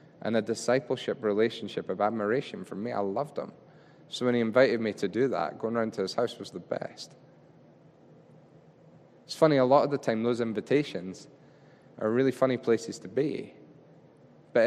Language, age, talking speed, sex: English, 20-39, 175 wpm, male